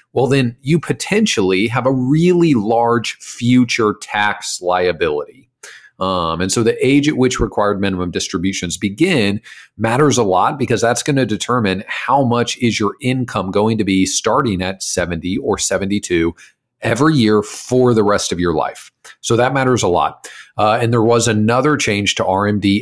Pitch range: 100-125 Hz